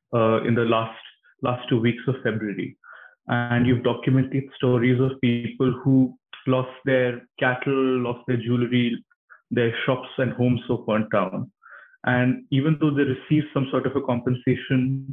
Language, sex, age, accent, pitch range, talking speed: English, male, 20-39, Indian, 120-140 Hz, 155 wpm